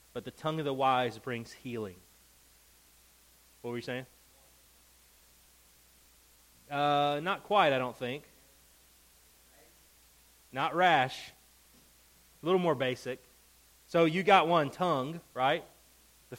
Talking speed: 115 wpm